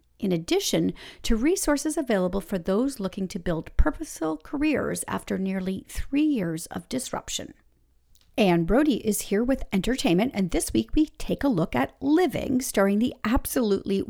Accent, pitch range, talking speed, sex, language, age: American, 185-270 Hz, 155 wpm, female, English, 40-59